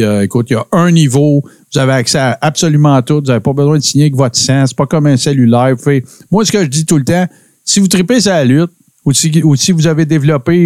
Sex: male